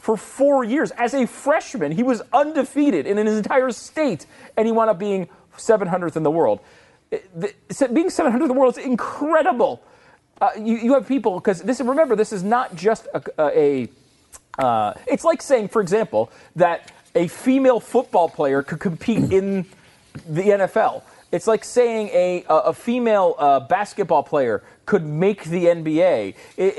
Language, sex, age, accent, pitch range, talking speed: English, male, 30-49, American, 180-255 Hz, 165 wpm